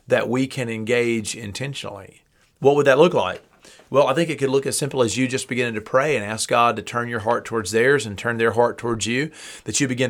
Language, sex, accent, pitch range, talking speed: English, male, American, 105-130 Hz, 250 wpm